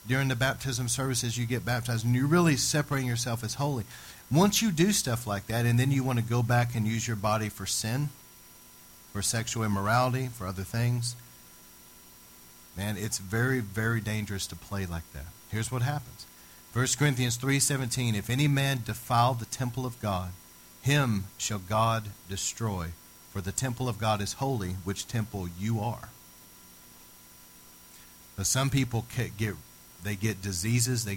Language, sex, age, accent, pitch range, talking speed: English, male, 40-59, American, 90-120 Hz, 165 wpm